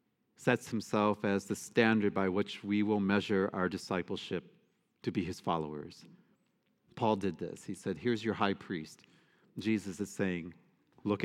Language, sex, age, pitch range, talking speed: English, male, 40-59, 100-130 Hz, 155 wpm